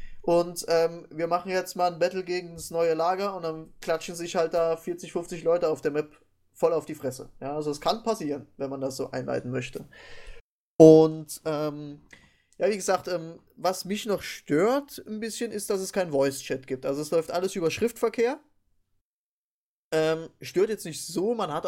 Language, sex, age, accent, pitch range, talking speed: English, male, 20-39, German, 155-190 Hz, 195 wpm